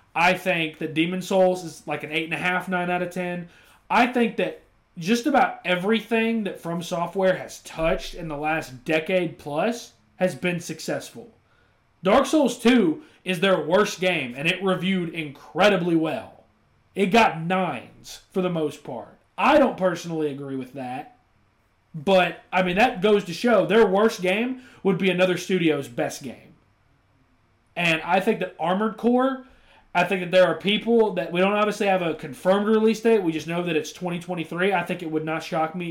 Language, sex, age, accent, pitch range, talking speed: English, male, 30-49, American, 155-190 Hz, 185 wpm